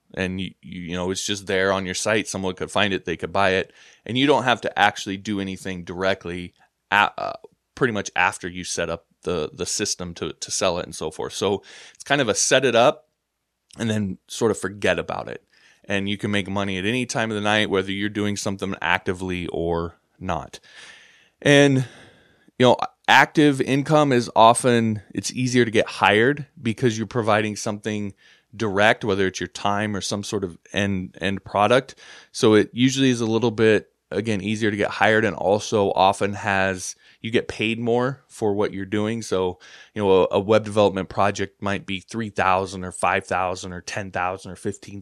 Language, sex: English, male